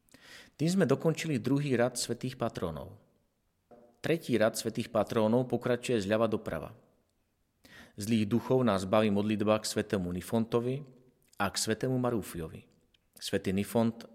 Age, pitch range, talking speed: 40-59, 105-130 Hz, 120 wpm